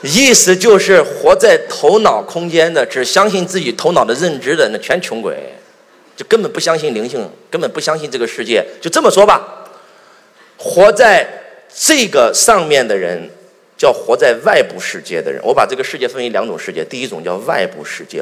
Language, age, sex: Chinese, 30-49, male